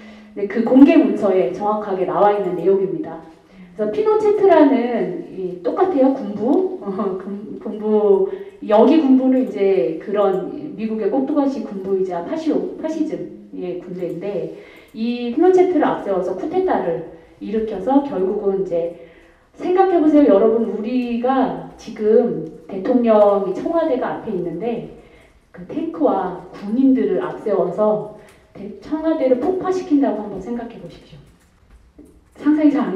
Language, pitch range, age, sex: Korean, 200-300 Hz, 40-59, female